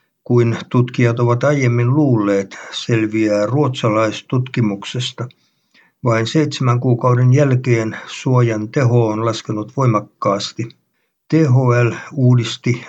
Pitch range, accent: 115-130 Hz, native